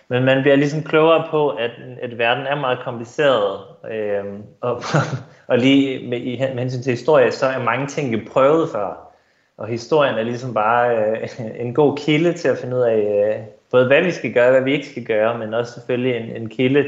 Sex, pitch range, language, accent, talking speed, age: male, 110-135 Hz, Danish, native, 205 wpm, 20-39